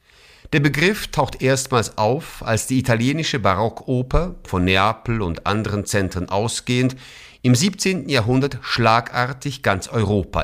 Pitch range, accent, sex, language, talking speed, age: 105-140 Hz, German, male, German, 120 wpm, 50-69